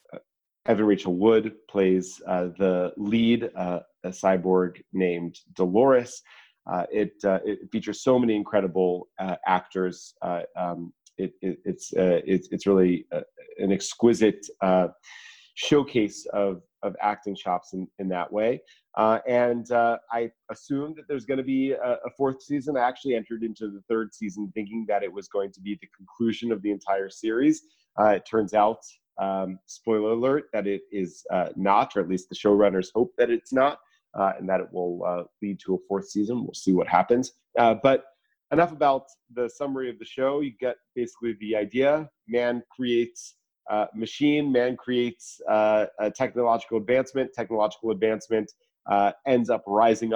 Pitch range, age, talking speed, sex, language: 100-125 Hz, 30-49, 170 wpm, male, English